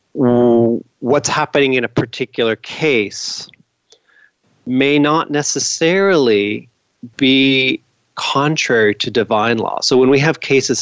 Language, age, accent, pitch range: English, 40-59, American, 110-135 Hz